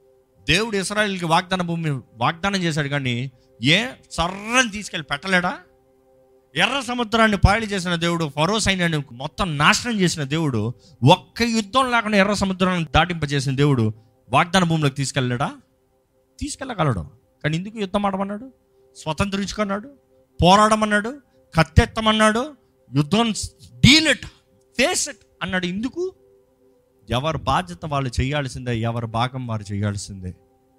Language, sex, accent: Telugu, male, native